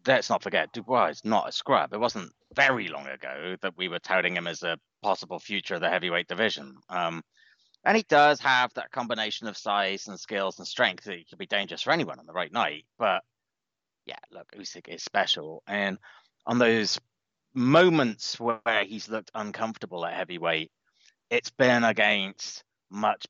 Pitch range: 100-150 Hz